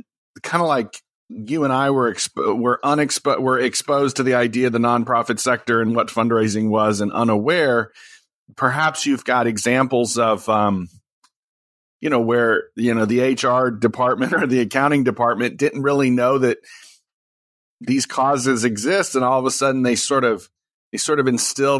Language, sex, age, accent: English, male, 40-59, American